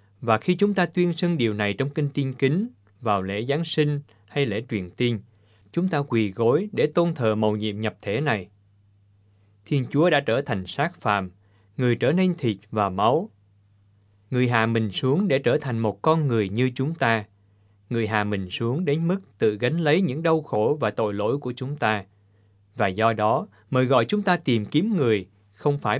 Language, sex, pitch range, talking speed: Vietnamese, male, 100-145 Hz, 205 wpm